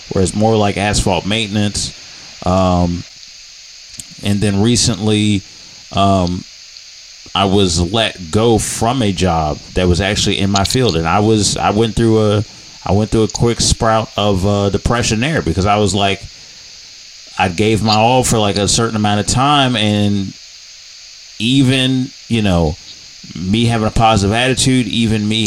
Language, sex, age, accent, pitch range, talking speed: English, male, 30-49, American, 95-110 Hz, 160 wpm